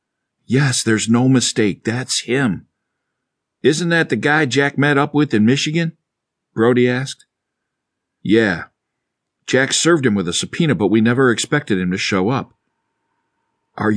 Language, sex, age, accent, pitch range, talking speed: English, male, 50-69, American, 105-140 Hz, 145 wpm